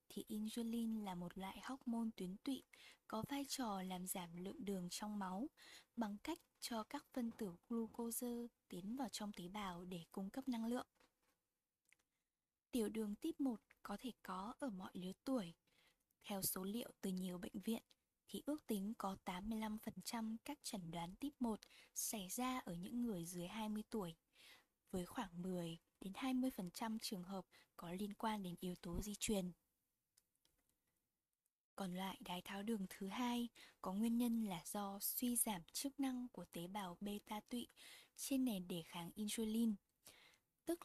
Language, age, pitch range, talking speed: Vietnamese, 10-29, 190-240 Hz, 165 wpm